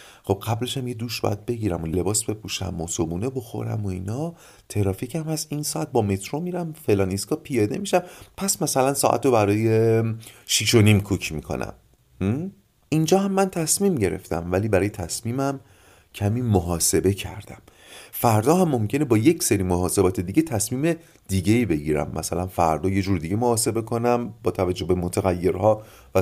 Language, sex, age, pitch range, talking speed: Persian, male, 40-59, 95-140 Hz, 160 wpm